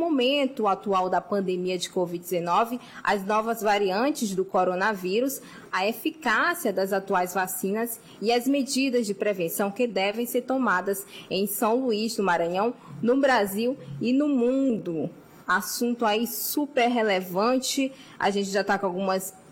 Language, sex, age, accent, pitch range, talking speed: Portuguese, female, 20-39, Brazilian, 195-250 Hz, 140 wpm